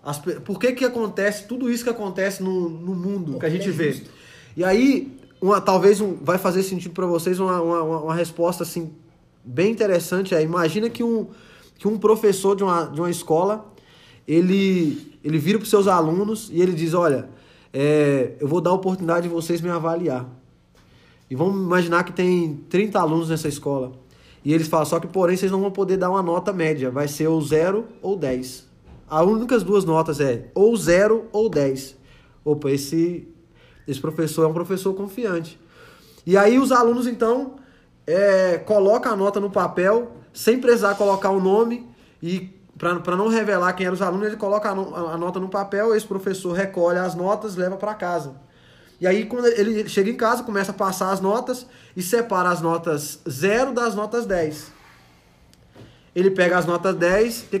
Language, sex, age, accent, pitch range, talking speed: Portuguese, male, 20-39, Brazilian, 160-205 Hz, 190 wpm